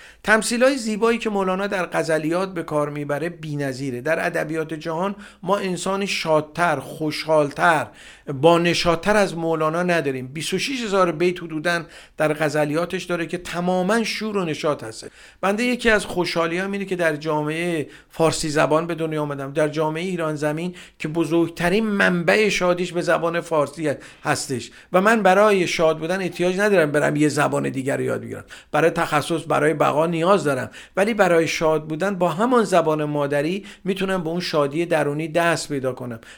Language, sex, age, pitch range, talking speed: Persian, male, 50-69, 155-190 Hz, 160 wpm